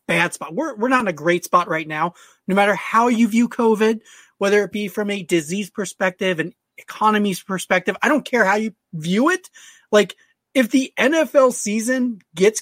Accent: American